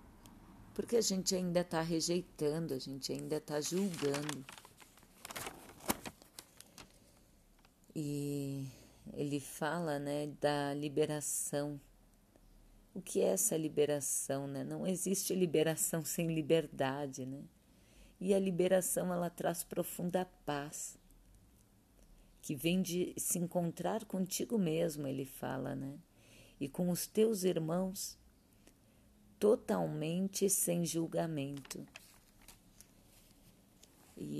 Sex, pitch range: female, 135-170 Hz